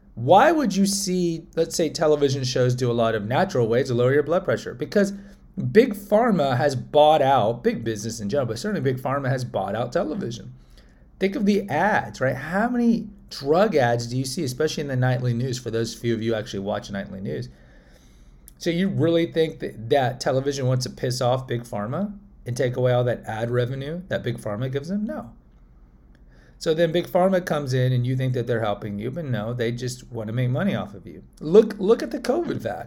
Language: English